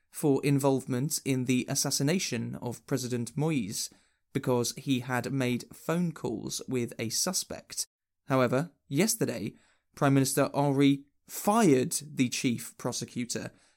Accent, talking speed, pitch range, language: British, 115 wpm, 125-150 Hz, English